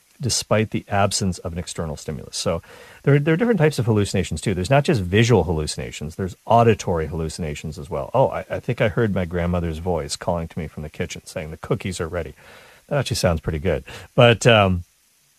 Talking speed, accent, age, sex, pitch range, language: 210 wpm, American, 40-59, male, 90-130 Hz, English